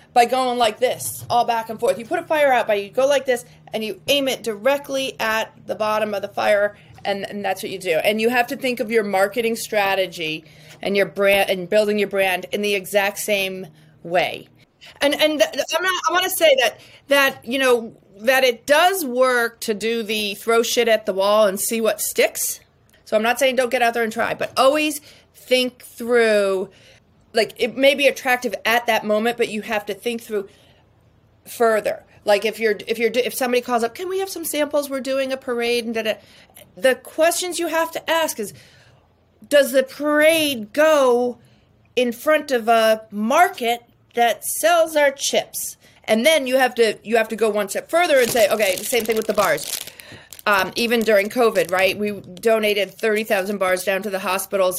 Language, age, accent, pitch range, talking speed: English, 30-49, American, 205-265 Hz, 210 wpm